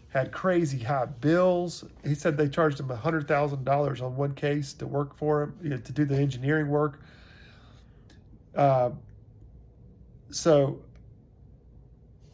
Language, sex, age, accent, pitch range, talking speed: English, male, 40-59, American, 125-155 Hz, 115 wpm